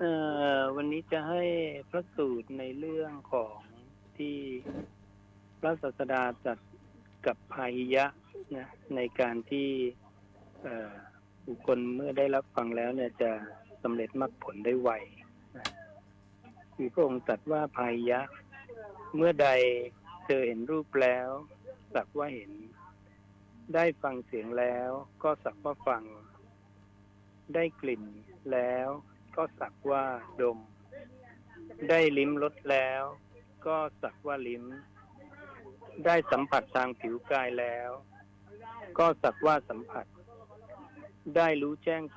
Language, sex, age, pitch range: Thai, male, 60-79, 110-145 Hz